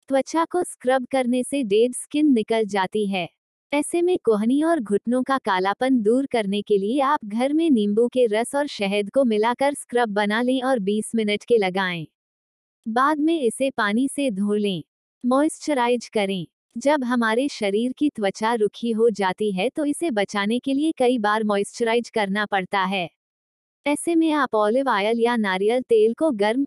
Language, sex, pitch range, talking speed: Hindi, female, 205-270 Hz, 175 wpm